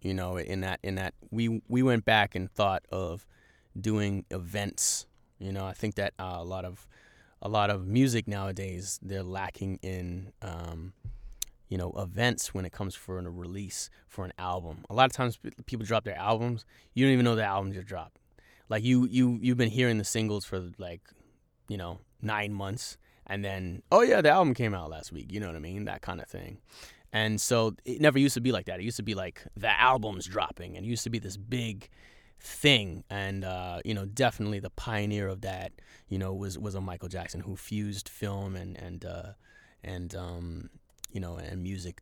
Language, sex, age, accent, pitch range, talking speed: English, male, 20-39, American, 95-110 Hz, 210 wpm